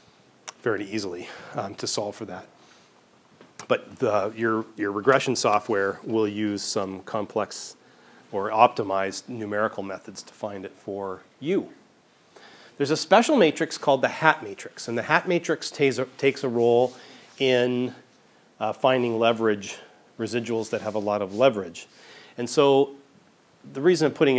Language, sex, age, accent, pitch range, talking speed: English, male, 40-59, American, 110-130 Hz, 145 wpm